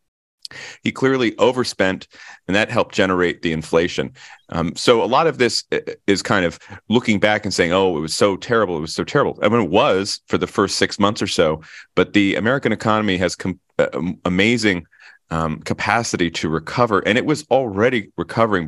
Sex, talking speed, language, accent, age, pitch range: male, 185 wpm, English, American, 30-49, 90-115 Hz